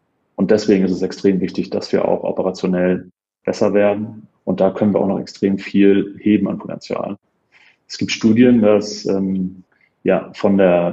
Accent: German